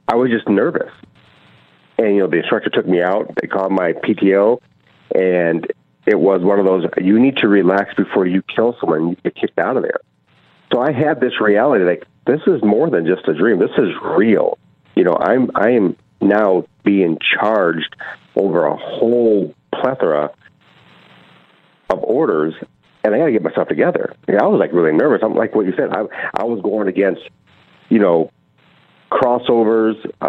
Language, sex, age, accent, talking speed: English, male, 50-69, American, 180 wpm